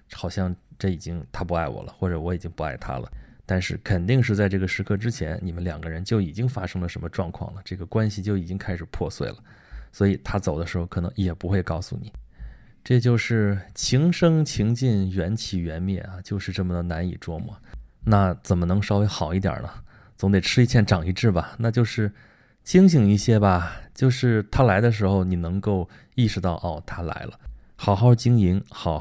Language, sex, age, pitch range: Chinese, male, 20-39, 90-110 Hz